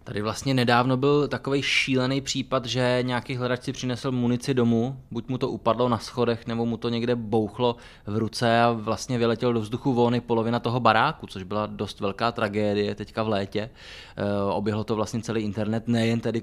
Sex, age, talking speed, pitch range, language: male, 20-39, 185 wpm, 110-125 Hz, Czech